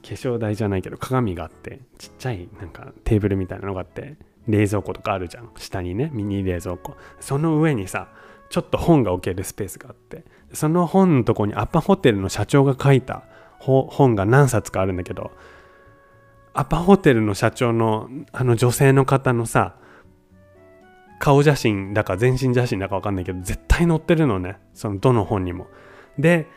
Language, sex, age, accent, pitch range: Japanese, male, 20-39, native, 100-140 Hz